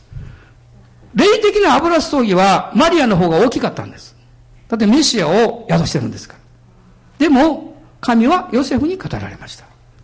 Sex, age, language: male, 60-79, Japanese